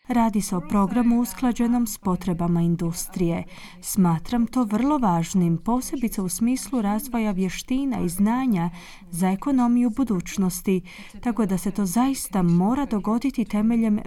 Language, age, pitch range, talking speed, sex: Croatian, 30-49, 180-240 Hz, 130 wpm, female